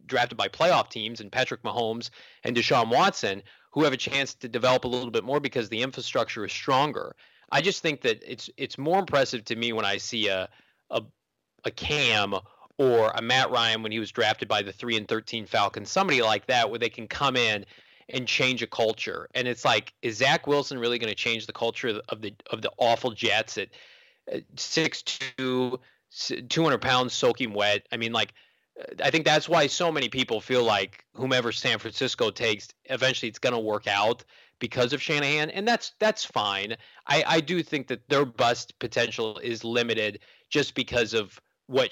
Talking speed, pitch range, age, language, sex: 195 wpm, 115-145 Hz, 30-49, English, male